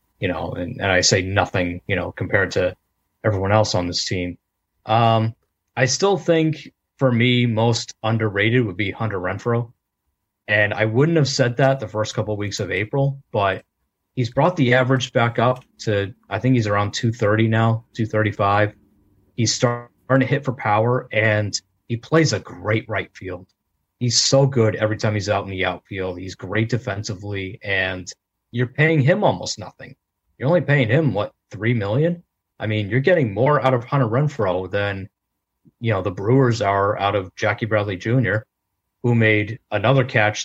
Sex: male